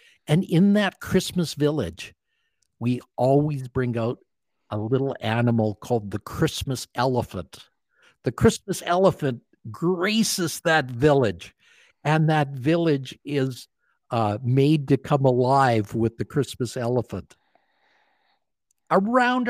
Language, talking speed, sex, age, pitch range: English, 110 wpm, male, 60-79, 130-180 Hz